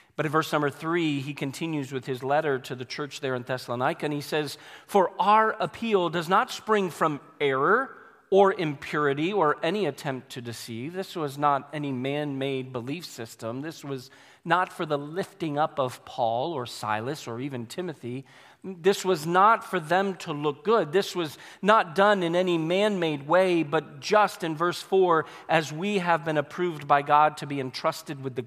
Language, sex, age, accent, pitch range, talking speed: English, male, 40-59, American, 140-195 Hz, 185 wpm